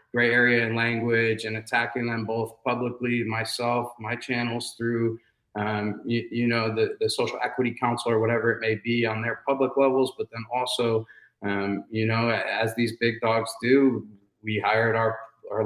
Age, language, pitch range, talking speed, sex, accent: 20-39, English, 105-120 Hz, 175 wpm, male, American